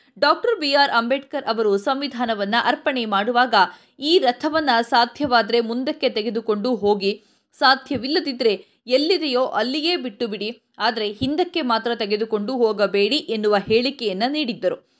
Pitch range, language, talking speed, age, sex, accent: 215-285 Hz, Kannada, 105 wpm, 20-39, female, native